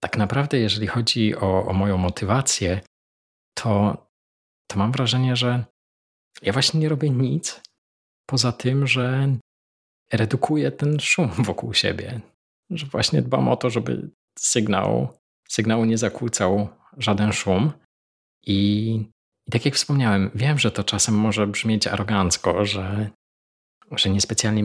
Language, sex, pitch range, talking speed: Polish, male, 95-120 Hz, 130 wpm